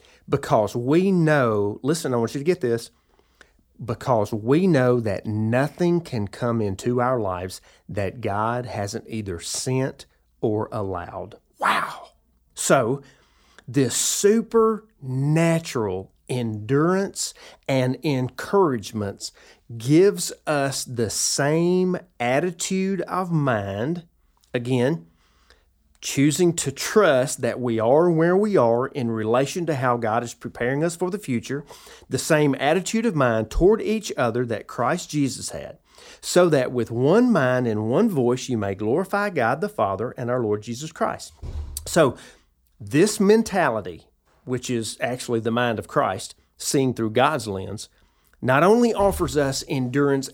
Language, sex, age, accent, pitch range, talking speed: English, male, 30-49, American, 110-155 Hz, 130 wpm